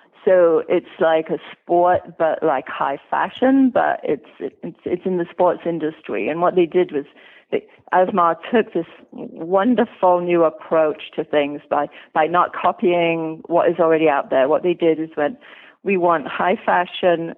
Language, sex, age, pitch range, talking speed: English, female, 40-59, 160-185 Hz, 170 wpm